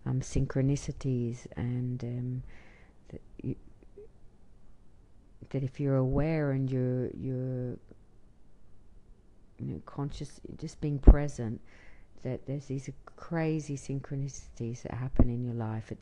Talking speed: 110 wpm